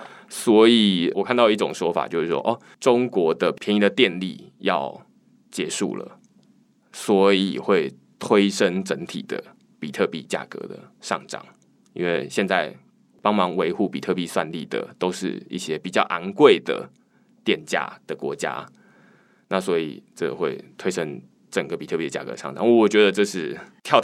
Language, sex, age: Chinese, male, 20-39